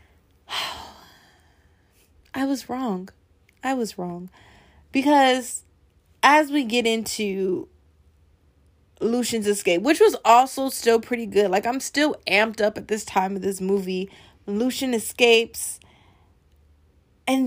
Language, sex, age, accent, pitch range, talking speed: English, female, 20-39, American, 190-280 Hz, 115 wpm